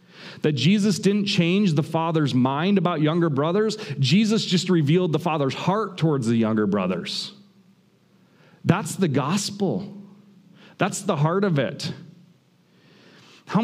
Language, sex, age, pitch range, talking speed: English, male, 40-59, 120-180 Hz, 130 wpm